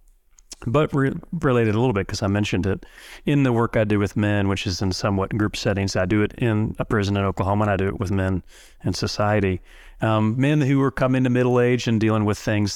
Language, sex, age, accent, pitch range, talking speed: English, male, 30-49, American, 100-115 Hz, 235 wpm